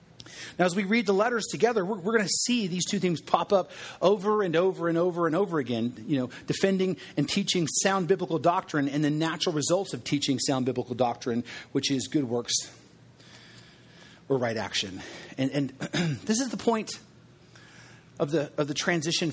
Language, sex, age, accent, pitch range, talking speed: English, male, 40-59, American, 145-185 Hz, 180 wpm